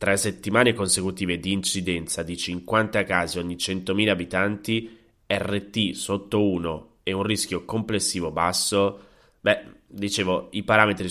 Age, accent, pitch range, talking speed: 20-39, native, 95-125 Hz, 125 wpm